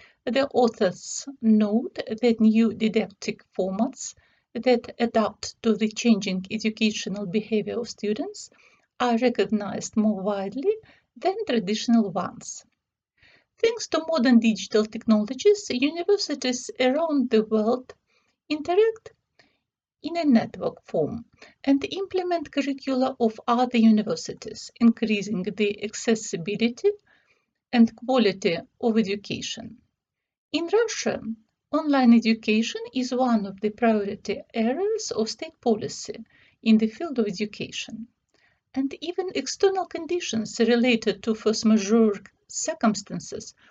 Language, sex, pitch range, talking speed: Russian, female, 220-275 Hz, 105 wpm